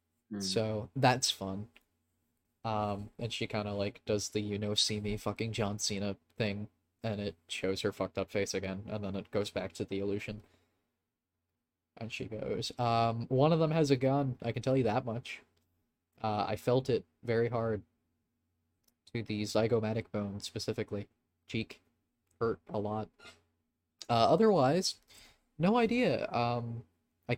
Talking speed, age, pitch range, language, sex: 160 wpm, 20-39, 95-115 Hz, English, male